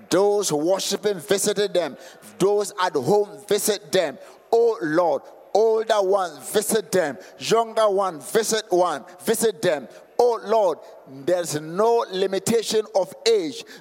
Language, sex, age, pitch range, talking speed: English, male, 50-69, 210-285 Hz, 120 wpm